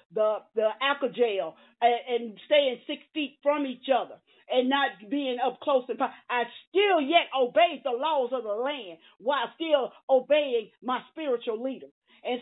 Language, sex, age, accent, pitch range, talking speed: English, female, 50-69, American, 235-300 Hz, 165 wpm